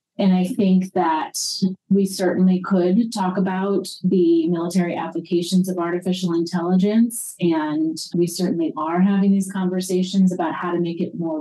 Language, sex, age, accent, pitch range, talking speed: English, female, 30-49, American, 165-190 Hz, 145 wpm